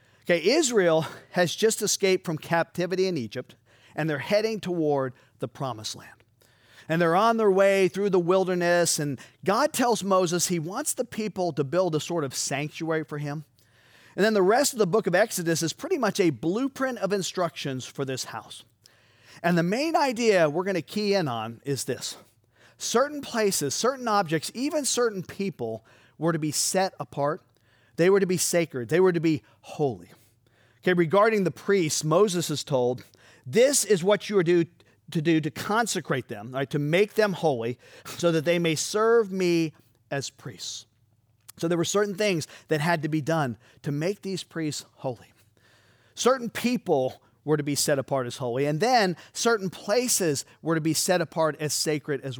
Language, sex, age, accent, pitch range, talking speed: English, male, 40-59, American, 130-190 Hz, 180 wpm